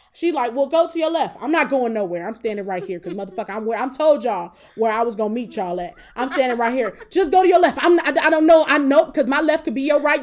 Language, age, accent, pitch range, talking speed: English, 20-39, American, 210-275 Hz, 310 wpm